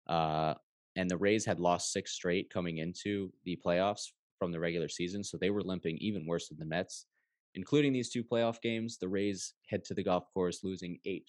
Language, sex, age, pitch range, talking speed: English, male, 20-39, 85-100 Hz, 205 wpm